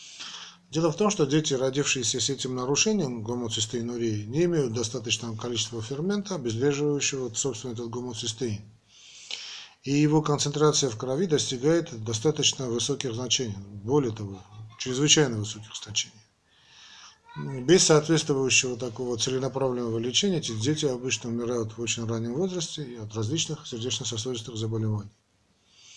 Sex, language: male, Russian